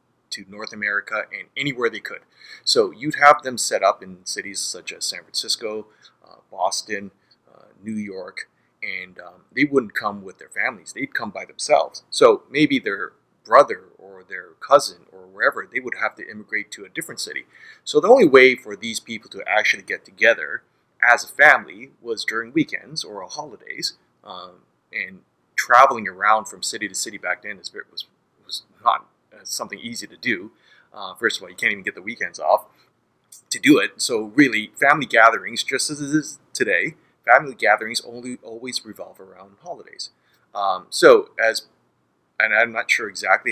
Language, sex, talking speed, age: English, male, 175 wpm, 30-49